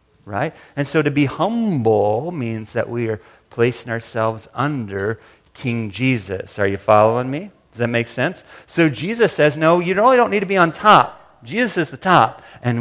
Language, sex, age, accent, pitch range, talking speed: English, male, 40-59, American, 110-155 Hz, 185 wpm